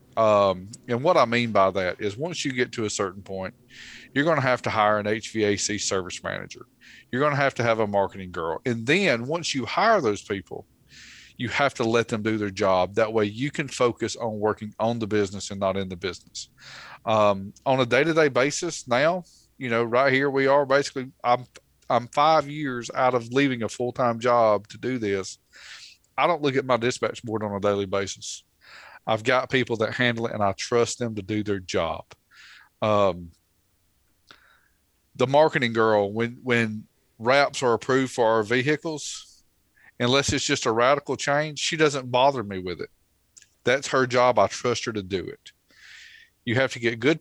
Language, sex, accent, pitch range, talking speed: English, male, American, 105-135 Hz, 195 wpm